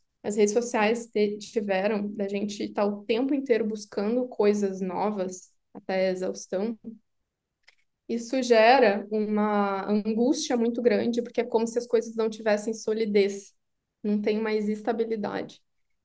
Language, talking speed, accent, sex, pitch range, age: Portuguese, 130 wpm, Brazilian, female, 210-245 Hz, 10-29